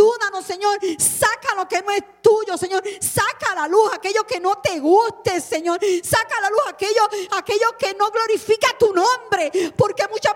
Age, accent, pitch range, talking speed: 50-69, American, 295-430 Hz, 175 wpm